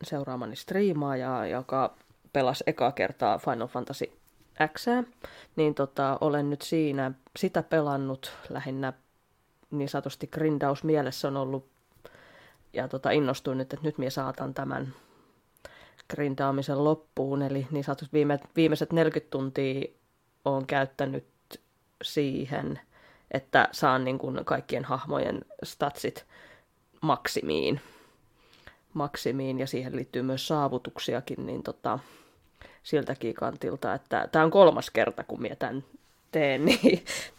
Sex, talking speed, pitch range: female, 110 wpm, 135-150 Hz